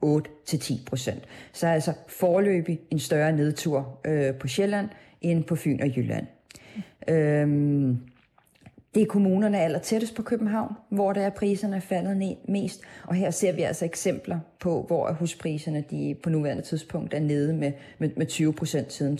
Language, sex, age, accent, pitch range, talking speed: Danish, female, 40-59, native, 145-180 Hz, 145 wpm